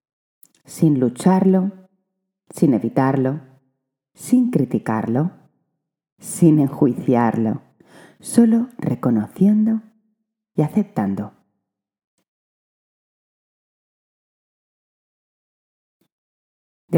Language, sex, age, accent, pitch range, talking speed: Spanish, female, 30-49, Spanish, 125-190 Hz, 45 wpm